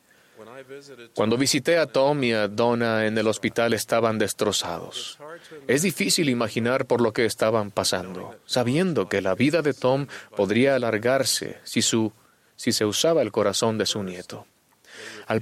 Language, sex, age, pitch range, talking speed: Spanish, male, 30-49, 105-125 Hz, 150 wpm